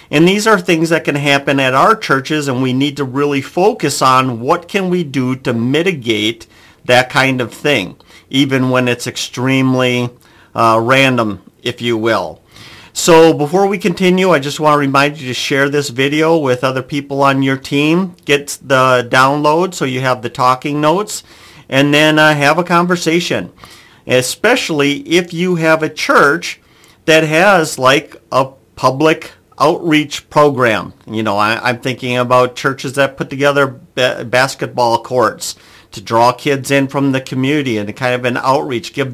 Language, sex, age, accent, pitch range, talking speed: English, male, 50-69, American, 125-155 Hz, 165 wpm